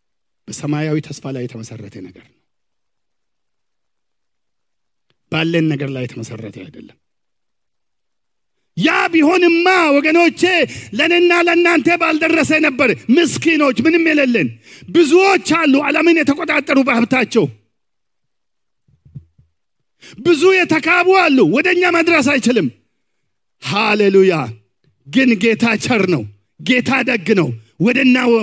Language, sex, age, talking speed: English, male, 50-69, 55 wpm